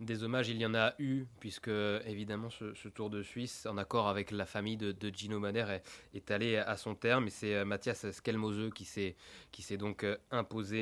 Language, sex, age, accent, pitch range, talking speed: French, male, 20-39, French, 100-120 Hz, 215 wpm